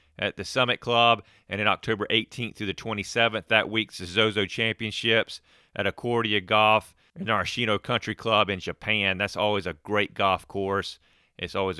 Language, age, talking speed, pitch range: English, 40-59, 175 wpm, 95-110 Hz